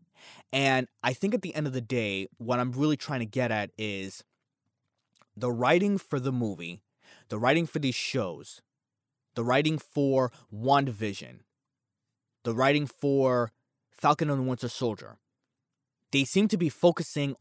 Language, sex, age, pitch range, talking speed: English, male, 20-39, 115-140 Hz, 150 wpm